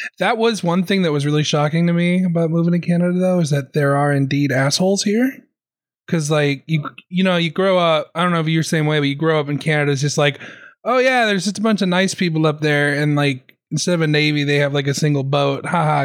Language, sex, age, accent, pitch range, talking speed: English, male, 20-39, American, 145-180 Hz, 265 wpm